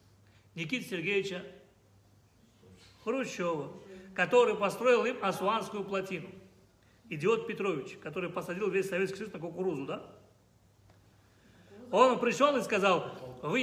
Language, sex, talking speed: Russian, male, 100 wpm